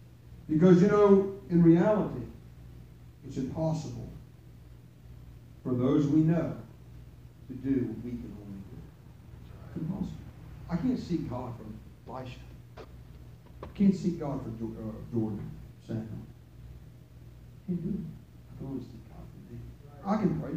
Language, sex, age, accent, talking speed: English, male, 50-69, American, 140 wpm